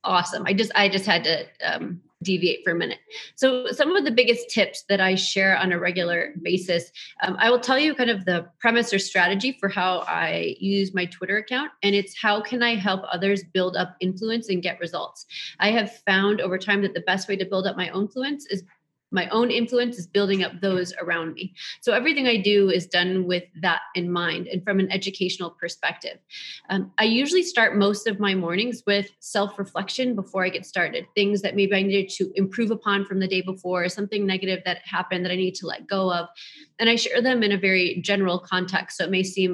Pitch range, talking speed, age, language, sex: 180-210 Hz, 220 wpm, 30-49, English, female